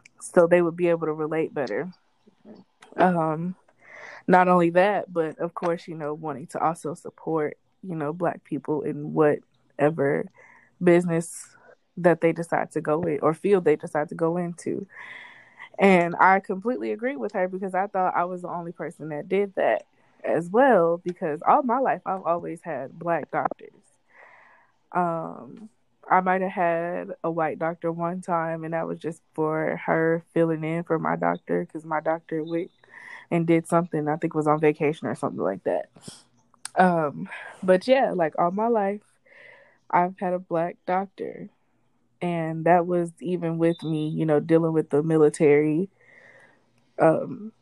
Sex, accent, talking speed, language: female, American, 165 wpm, English